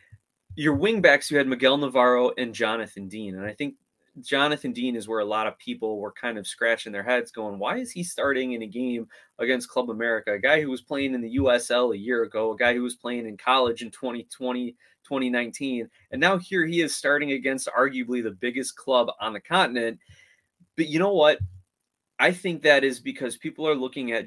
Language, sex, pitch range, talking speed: English, male, 115-150 Hz, 210 wpm